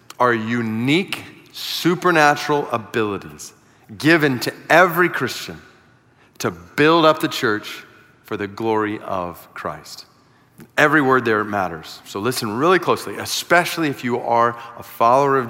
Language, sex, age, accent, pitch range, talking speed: English, male, 40-59, American, 115-155 Hz, 130 wpm